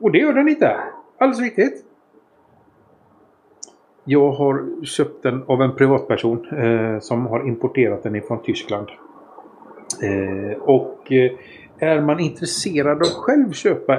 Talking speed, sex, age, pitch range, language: 130 wpm, male, 50-69, 115-155 Hz, Swedish